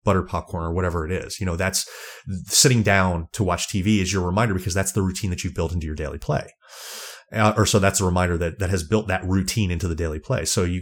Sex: male